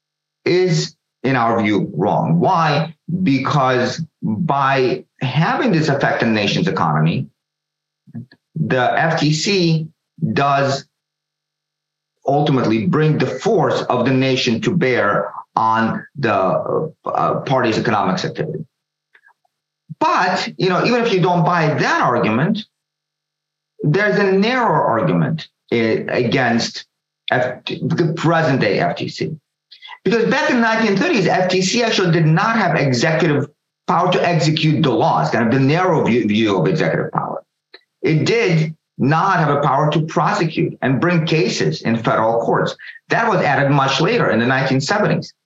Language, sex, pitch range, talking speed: English, male, 135-175 Hz, 130 wpm